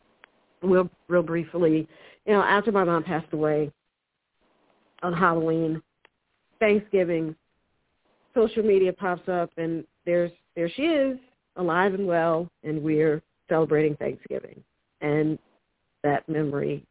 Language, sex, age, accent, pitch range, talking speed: English, female, 50-69, American, 150-195 Hz, 115 wpm